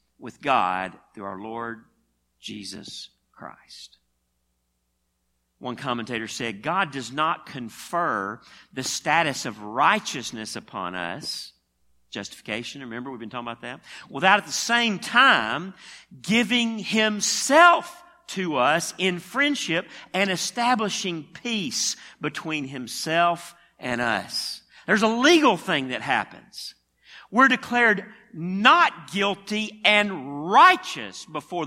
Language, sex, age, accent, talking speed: English, male, 50-69, American, 110 wpm